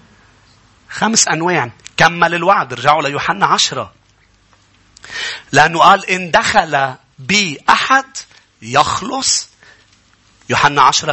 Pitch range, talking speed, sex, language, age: 165-265 Hz, 90 wpm, male, English, 40-59